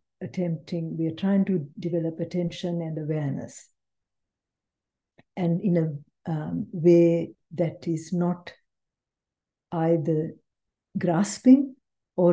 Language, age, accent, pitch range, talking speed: English, 60-79, Indian, 165-205 Hz, 95 wpm